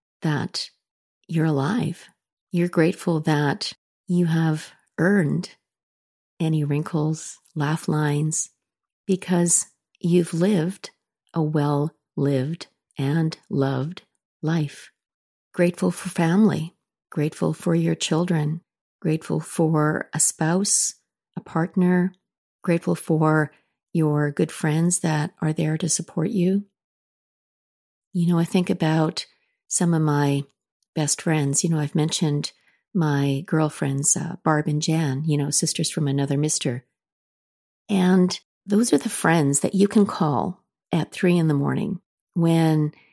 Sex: female